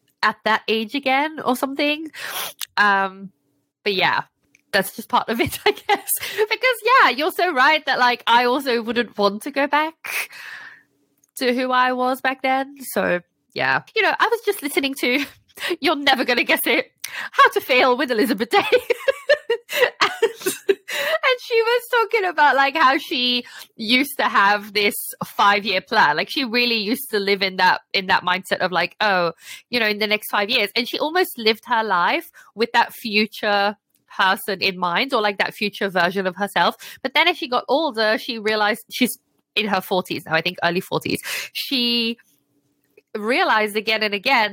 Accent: British